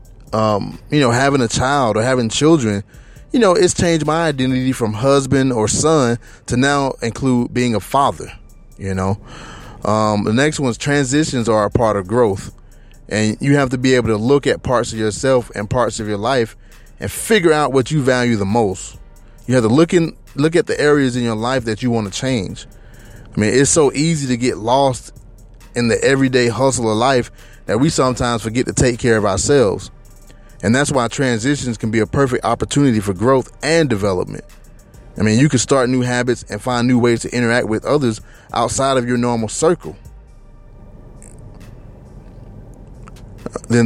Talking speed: 185 wpm